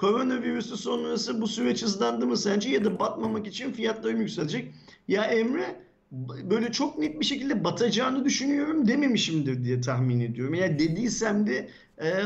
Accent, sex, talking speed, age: native, male, 155 wpm, 50-69